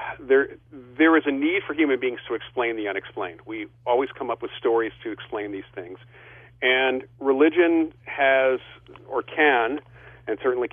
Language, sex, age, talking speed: English, male, 50-69, 160 wpm